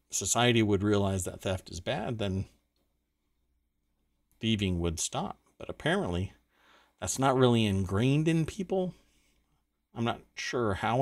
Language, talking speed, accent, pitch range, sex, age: English, 125 wpm, American, 85-125 Hz, male, 40-59